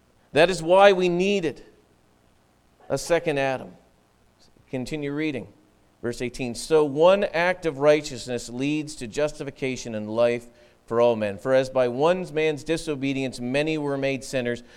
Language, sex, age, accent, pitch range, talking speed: English, male, 40-59, American, 125-200 Hz, 140 wpm